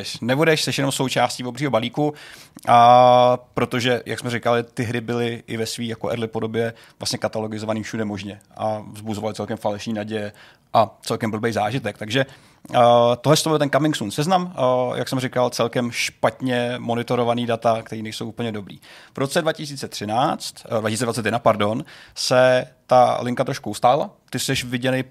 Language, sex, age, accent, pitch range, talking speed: Czech, male, 30-49, native, 110-125 Hz, 155 wpm